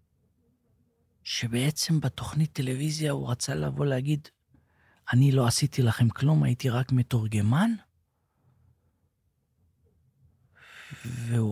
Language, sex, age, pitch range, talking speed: Hebrew, male, 40-59, 115-155 Hz, 85 wpm